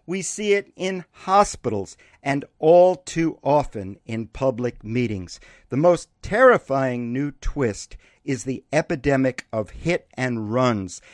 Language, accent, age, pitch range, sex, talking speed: English, American, 50-69, 110-155 Hz, male, 130 wpm